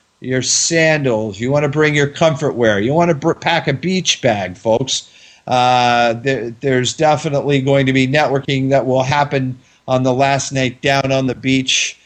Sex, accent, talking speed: male, American, 175 wpm